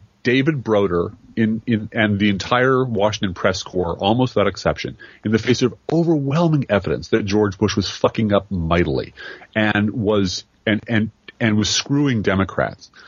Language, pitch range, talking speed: English, 95-115 Hz, 155 wpm